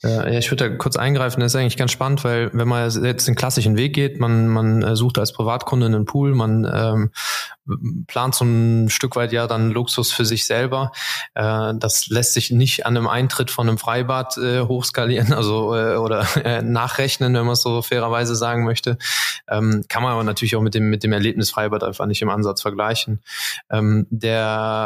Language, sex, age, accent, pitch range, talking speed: German, male, 20-39, German, 110-125 Hz, 200 wpm